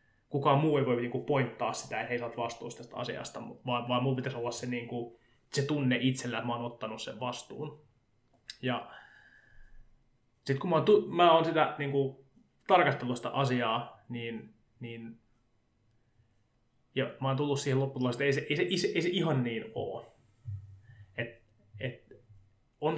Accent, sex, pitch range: native, male, 115-140 Hz